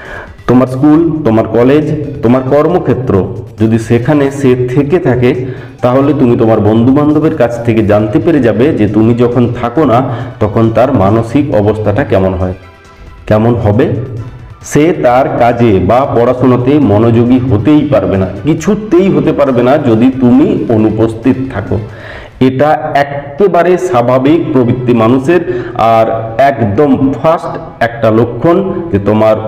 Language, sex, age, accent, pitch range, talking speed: Bengali, male, 50-69, native, 110-150 Hz, 90 wpm